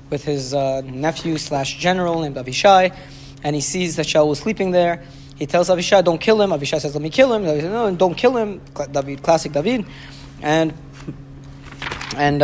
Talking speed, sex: 185 wpm, male